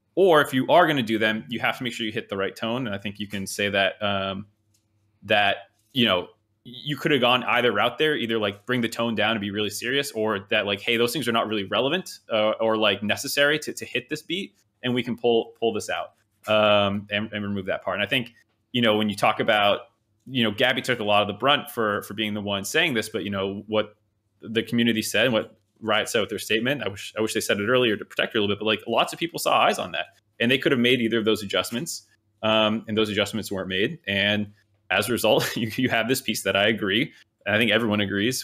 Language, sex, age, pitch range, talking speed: English, male, 20-39, 105-120 Hz, 270 wpm